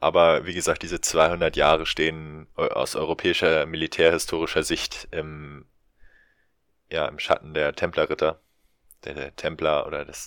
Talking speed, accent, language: 130 wpm, German, German